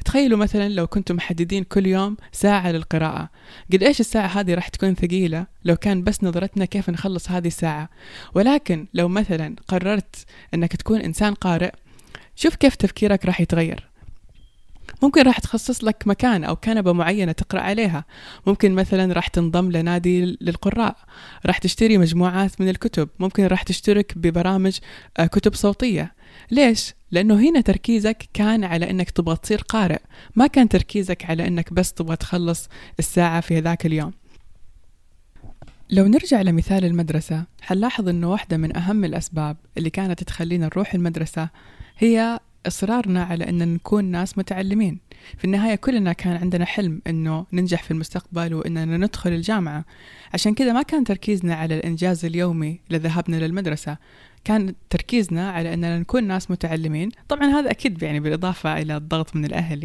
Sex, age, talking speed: female, 20-39, 145 wpm